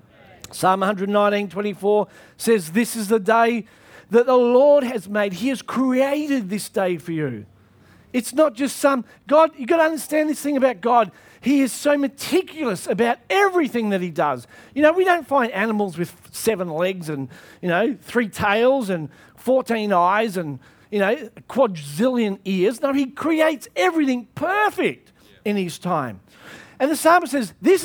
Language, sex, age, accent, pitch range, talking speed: English, male, 40-59, Australian, 190-270 Hz, 165 wpm